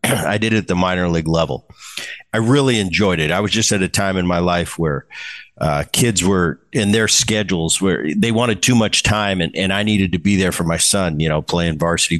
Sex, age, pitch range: male, 50-69, 90-120 Hz